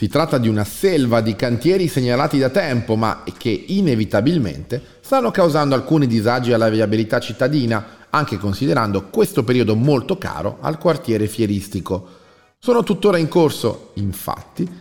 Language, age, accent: Italian, 40-59, native